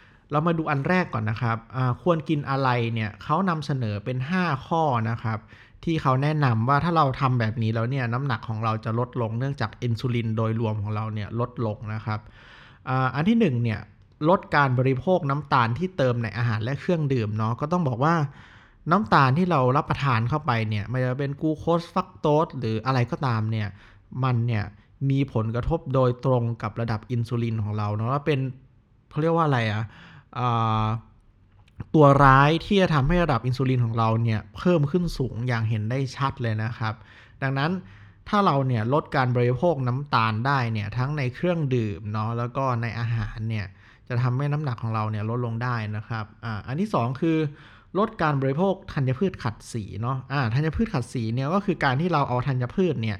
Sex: male